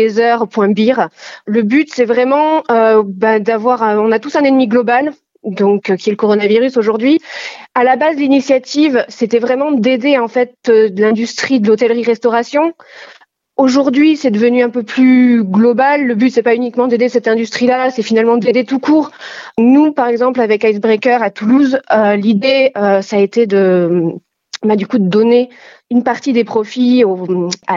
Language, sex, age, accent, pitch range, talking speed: French, female, 30-49, French, 215-255 Hz, 175 wpm